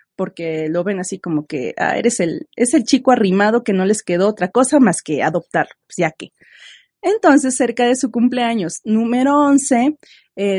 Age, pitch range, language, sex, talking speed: 30-49, 195-270 Hz, Spanish, female, 180 wpm